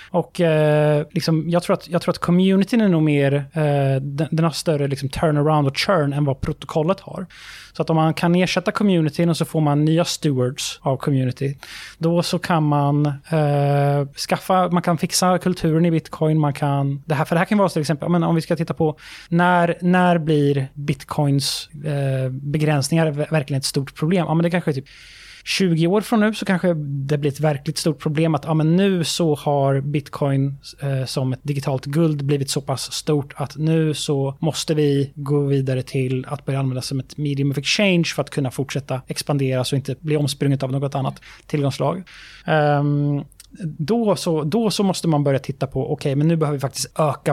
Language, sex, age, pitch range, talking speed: Swedish, male, 20-39, 140-165 Hz, 200 wpm